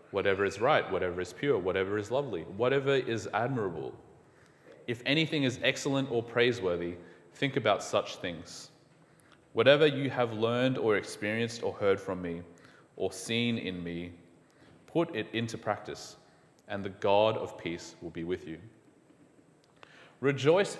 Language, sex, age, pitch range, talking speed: English, male, 30-49, 95-140 Hz, 145 wpm